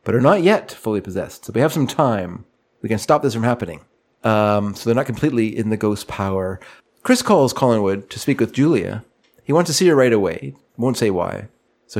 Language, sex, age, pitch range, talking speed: English, male, 40-59, 110-145 Hz, 220 wpm